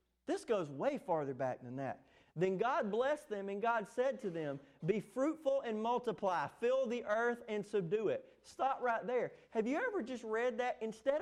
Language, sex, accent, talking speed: English, male, American, 195 wpm